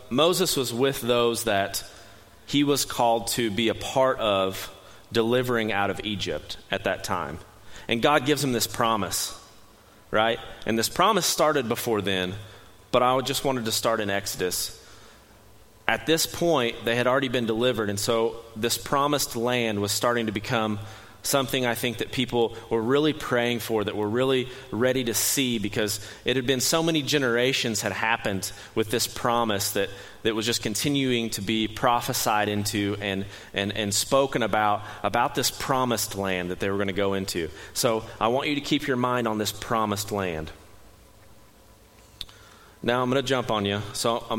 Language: English